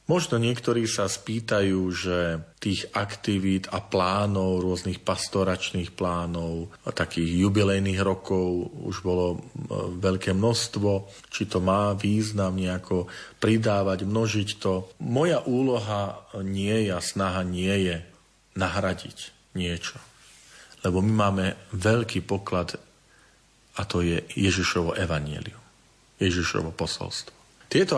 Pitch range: 90-110 Hz